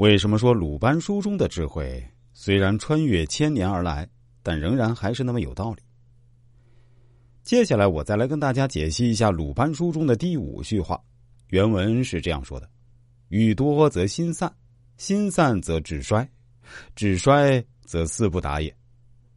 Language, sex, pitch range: Chinese, male, 90-120 Hz